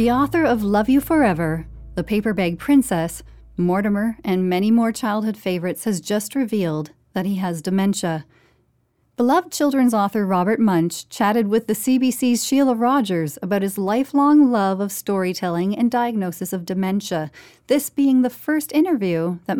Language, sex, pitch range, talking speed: English, female, 180-245 Hz, 155 wpm